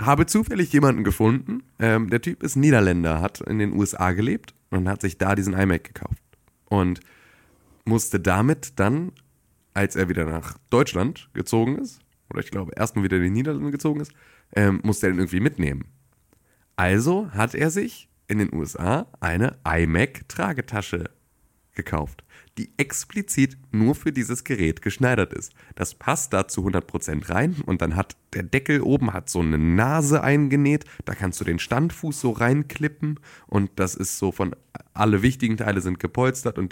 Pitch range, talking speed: 95-135 Hz, 165 wpm